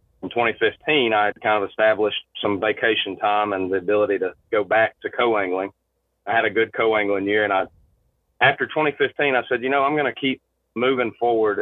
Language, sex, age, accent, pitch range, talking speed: English, male, 30-49, American, 100-110 Hz, 195 wpm